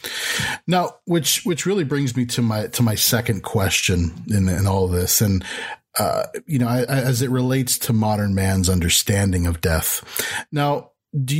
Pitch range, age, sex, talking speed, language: 105-140 Hz, 40-59, male, 175 wpm, English